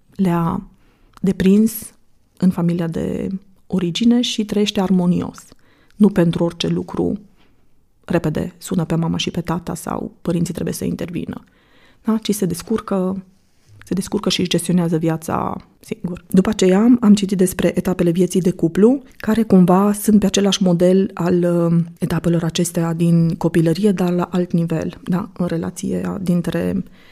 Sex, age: female, 20-39